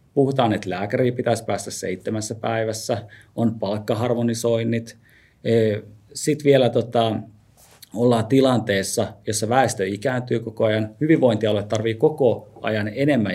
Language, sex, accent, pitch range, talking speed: Finnish, male, native, 105-125 Hz, 110 wpm